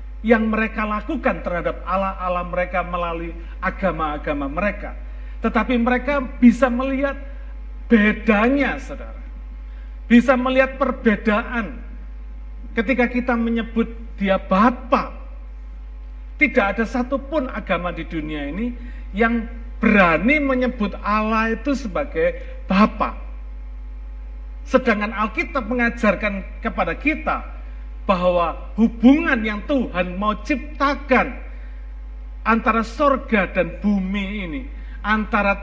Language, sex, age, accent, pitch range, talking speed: Indonesian, male, 50-69, native, 155-260 Hz, 95 wpm